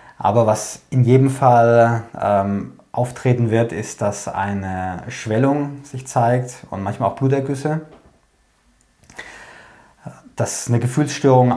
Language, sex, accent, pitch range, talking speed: German, male, German, 105-125 Hz, 110 wpm